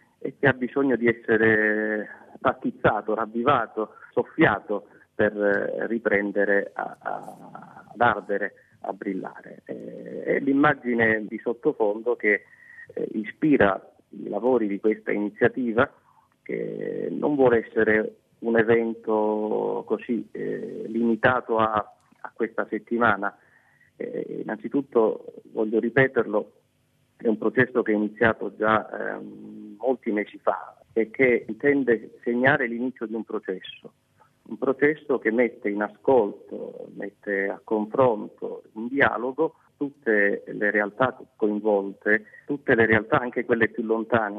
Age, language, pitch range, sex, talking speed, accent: 30-49, Italian, 105-125 Hz, male, 115 wpm, native